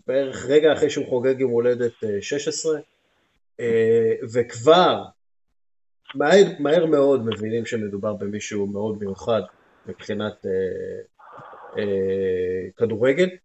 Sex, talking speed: male, 90 wpm